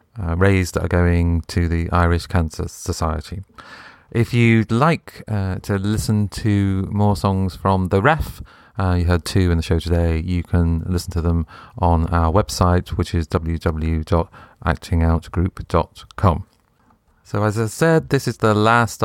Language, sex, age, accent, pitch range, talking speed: English, male, 40-59, British, 85-105 Hz, 150 wpm